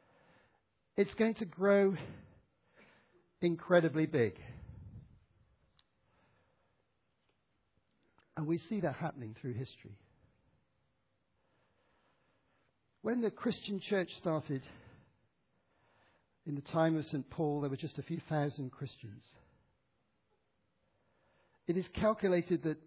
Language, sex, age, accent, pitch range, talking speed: English, male, 60-79, British, 120-170 Hz, 90 wpm